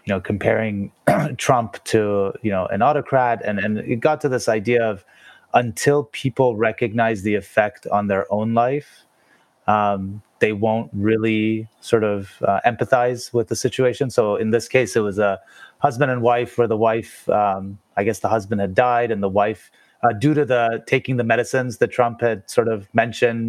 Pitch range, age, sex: 105-125 Hz, 30-49, male